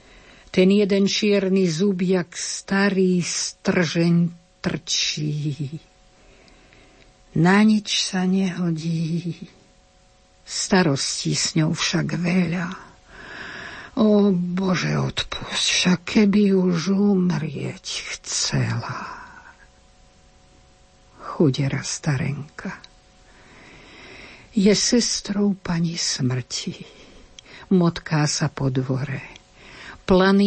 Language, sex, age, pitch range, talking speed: Slovak, female, 60-79, 145-195 Hz, 70 wpm